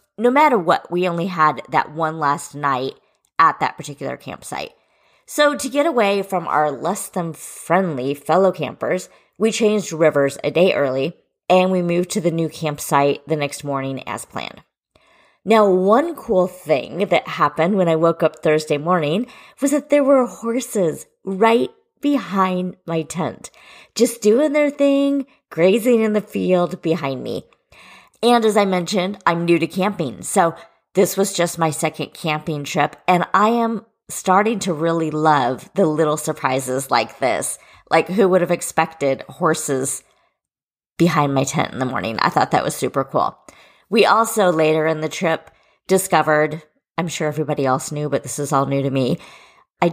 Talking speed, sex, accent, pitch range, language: 170 wpm, female, American, 155-200 Hz, English